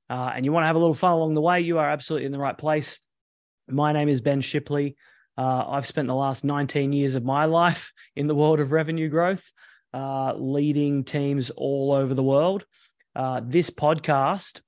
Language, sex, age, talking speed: English, male, 20-39, 205 wpm